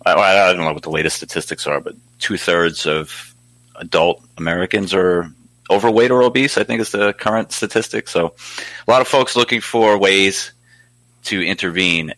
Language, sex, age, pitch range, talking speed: English, male, 30-49, 85-120 Hz, 165 wpm